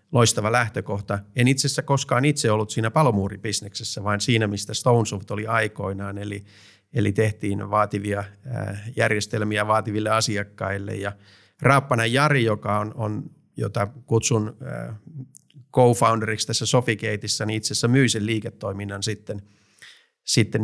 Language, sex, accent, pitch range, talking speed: Finnish, male, native, 105-120 Hz, 115 wpm